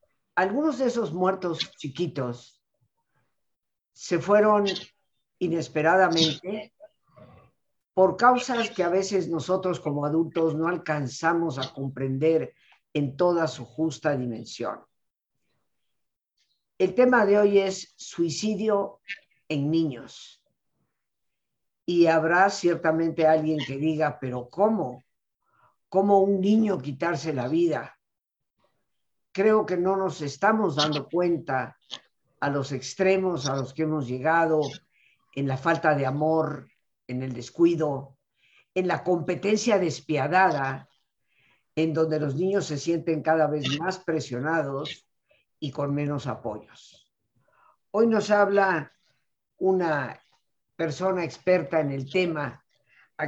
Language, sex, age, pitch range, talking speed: Spanish, female, 50-69, 145-185 Hz, 110 wpm